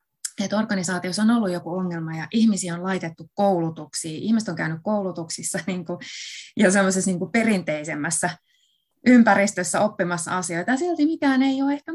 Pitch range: 175-245 Hz